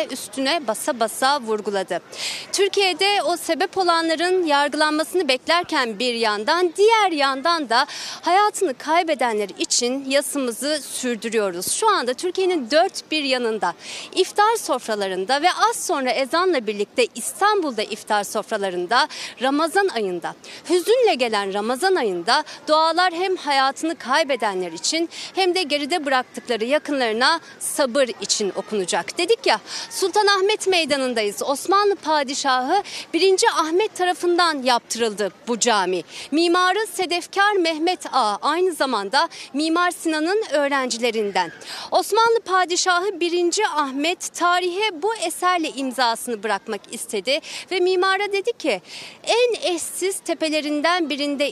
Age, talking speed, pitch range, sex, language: 40-59, 110 wpm, 245-360 Hz, female, Turkish